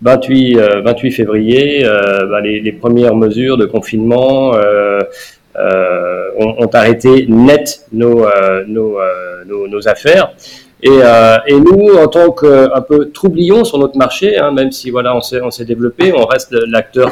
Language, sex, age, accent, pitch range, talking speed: French, male, 40-59, French, 115-140 Hz, 170 wpm